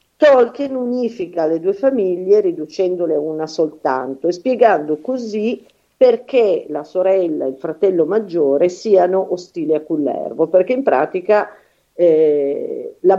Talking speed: 125 wpm